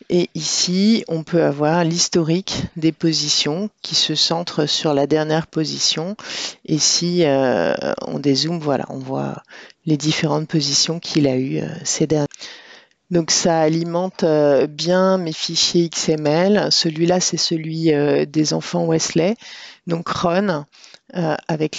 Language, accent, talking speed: French, French, 140 wpm